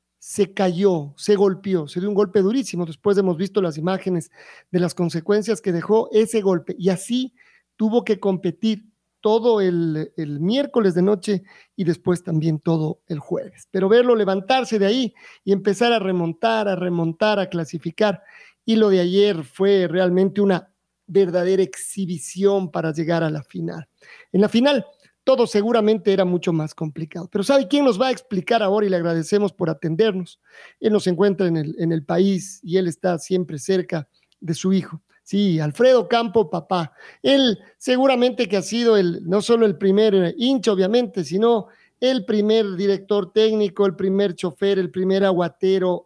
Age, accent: 40-59, Mexican